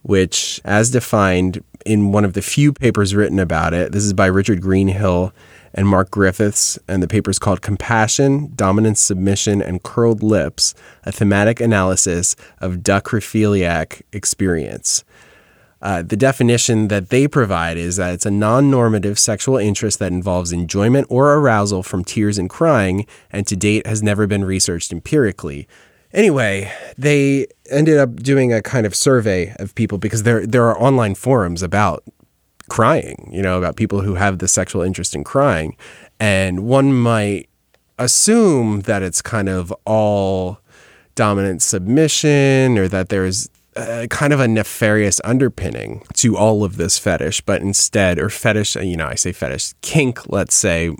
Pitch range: 95-115 Hz